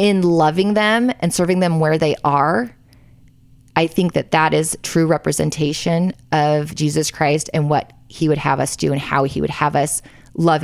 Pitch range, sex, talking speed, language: 145-180 Hz, female, 185 wpm, English